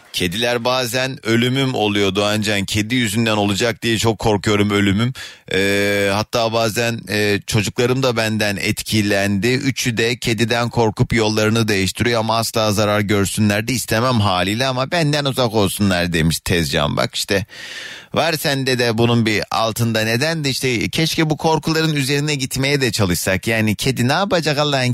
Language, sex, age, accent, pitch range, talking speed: Turkish, male, 30-49, native, 105-125 Hz, 150 wpm